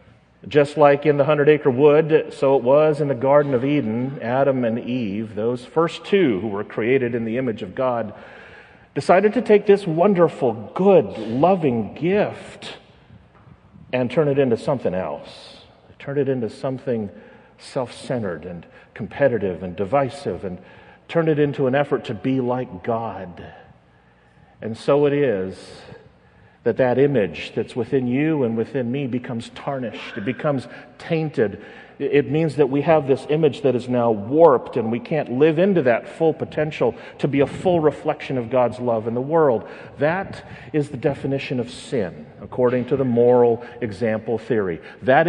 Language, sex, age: English, male, 50-69